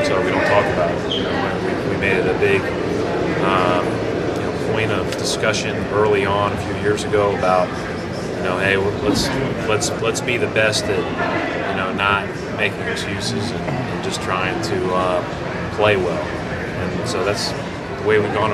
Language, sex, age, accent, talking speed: English, male, 30-49, American, 190 wpm